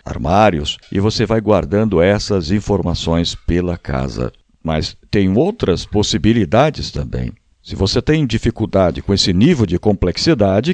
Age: 60-79